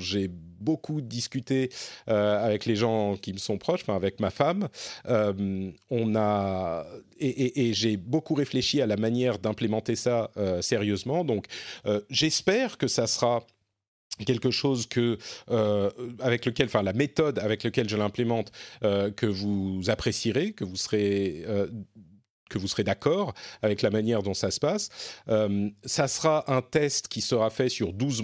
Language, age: French, 40-59